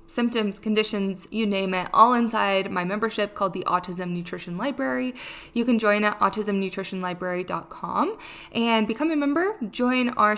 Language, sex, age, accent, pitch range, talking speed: English, female, 20-39, American, 185-230 Hz, 145 wpm